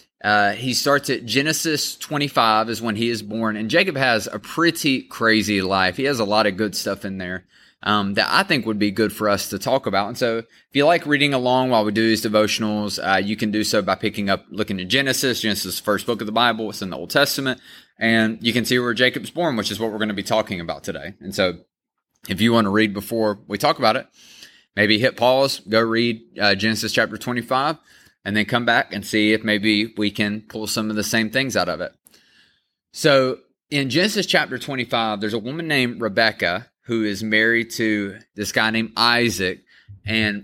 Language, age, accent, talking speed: English, 20-39, American, 225 wpm